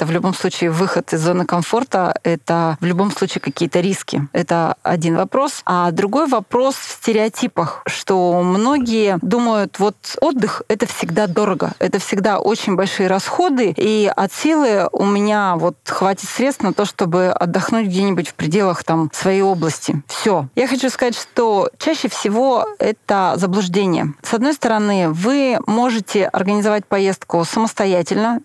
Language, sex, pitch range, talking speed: Russian, female, 180-230 Hz, 145 wpm